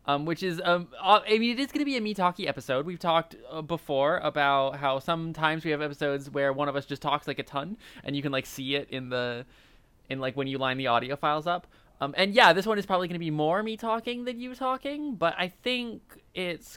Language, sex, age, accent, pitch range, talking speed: English, male, 20-39, American, 140-195 Hz, 250 wpm